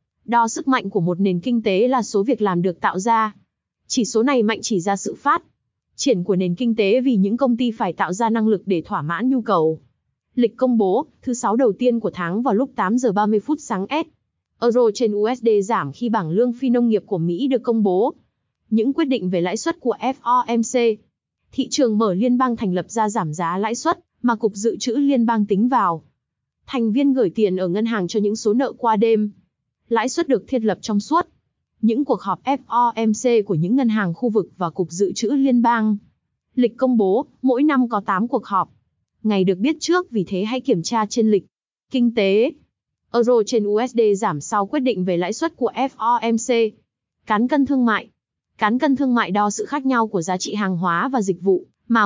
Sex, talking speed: female, 220 wpm